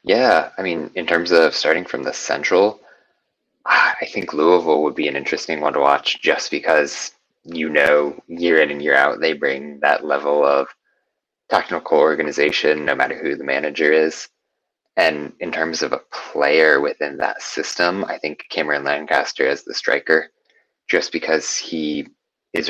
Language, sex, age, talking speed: English, male, 20-39, 165 wpm